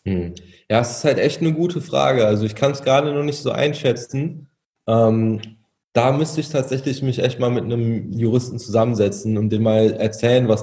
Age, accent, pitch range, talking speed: 20-39, German, 110-130 Hz, 200 wpm